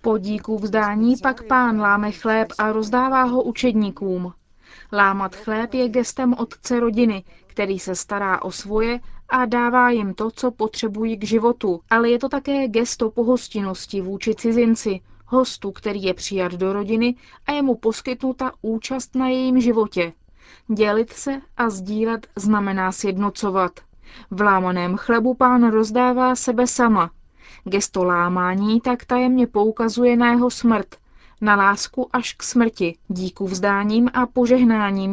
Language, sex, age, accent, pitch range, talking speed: Czech, female, 30-49, native, 200-245 Hz, 135 wpm